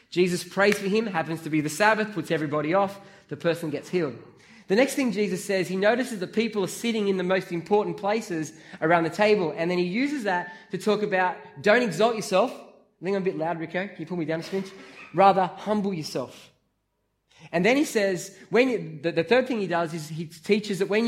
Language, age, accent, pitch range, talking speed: English, 20-39, Australian, 170-215 Hz, 230 wpm